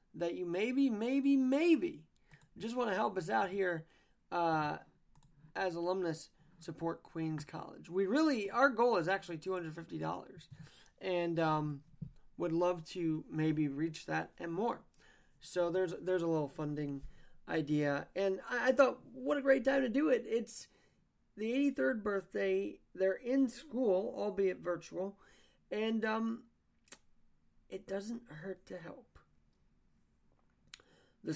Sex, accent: male, American